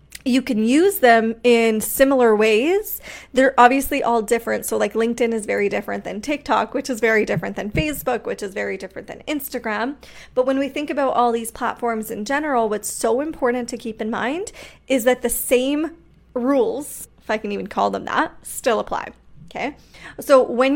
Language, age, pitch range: English, 20-39, 220-265 Hz